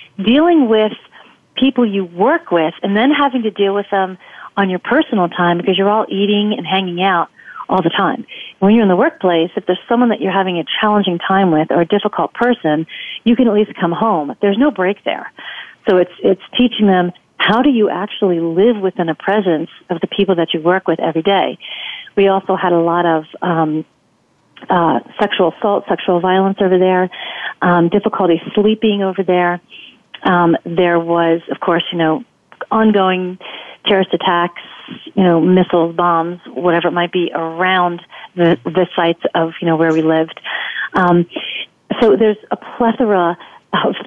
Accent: American